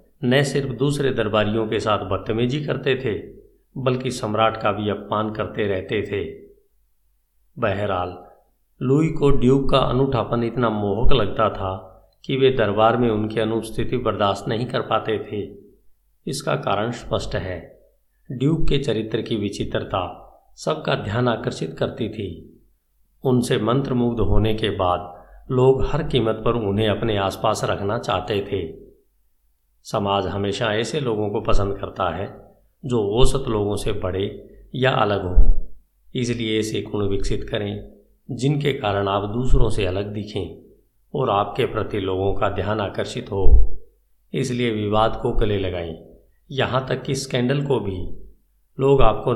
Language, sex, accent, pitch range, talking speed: Hindi, male, native, 100-130 Hz, 140 wpm